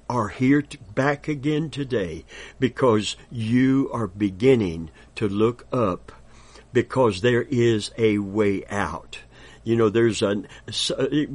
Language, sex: English, male